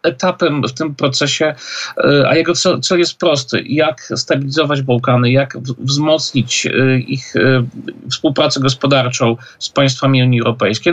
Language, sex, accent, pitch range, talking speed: Polish, male, native, 115-140 Hz, 115 wpm